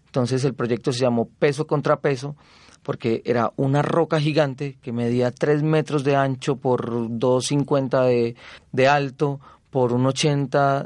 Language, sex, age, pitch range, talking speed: Spanish, male, 30-49, 125-150 Hz, 150 wpm